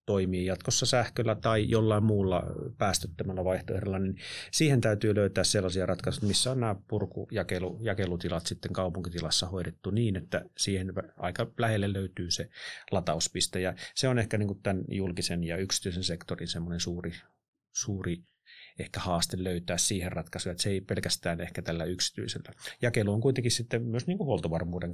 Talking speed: 155 wpm